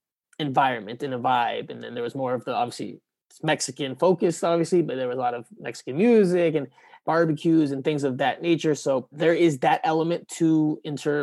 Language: English